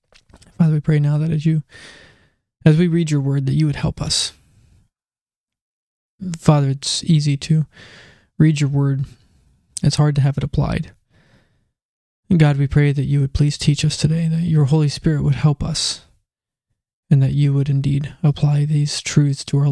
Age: 20-39